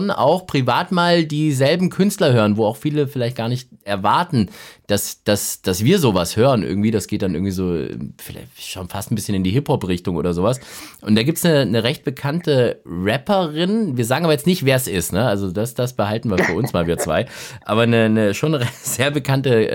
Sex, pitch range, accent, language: male, 120-165 Hz, German, German